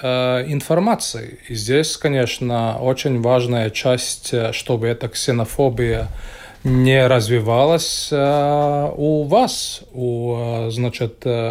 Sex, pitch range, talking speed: male, 120-140 Hz, 85 wpm